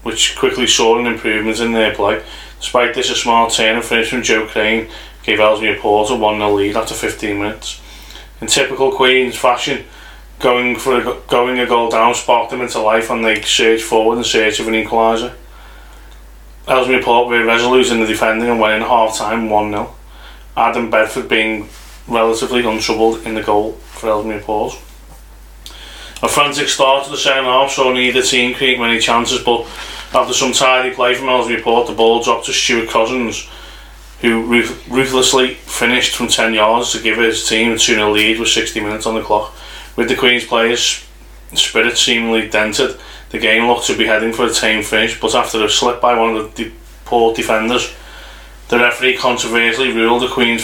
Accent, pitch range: British, 110-125 Hz